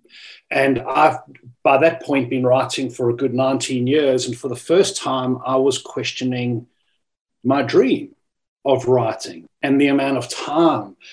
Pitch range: 125-150 Hz